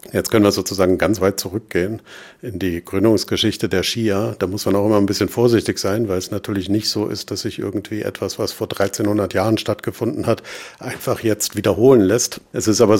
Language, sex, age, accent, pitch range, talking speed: German, male, 50-69, German, 90-110 Hz, 205 wpm